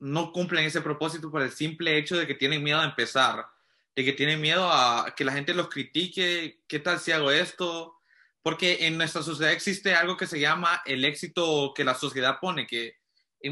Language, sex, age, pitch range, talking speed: English, male, 20-39, 140-170 Hz, 205 wpm